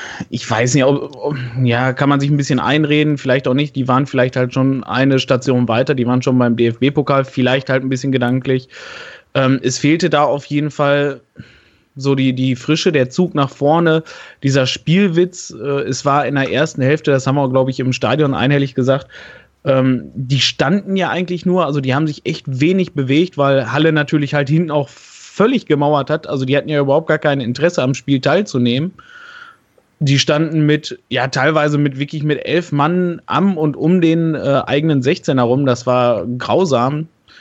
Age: 20-39